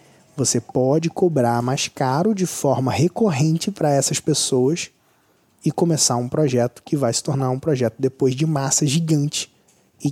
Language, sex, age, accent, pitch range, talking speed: Portuguese, male, 20-39, Brazilian, 125-160 Hz, 155 wpm